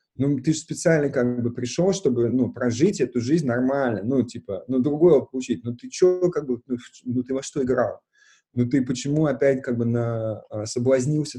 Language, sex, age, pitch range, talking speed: Russian, male, 20-39, 115-145 Hz, 190 wpm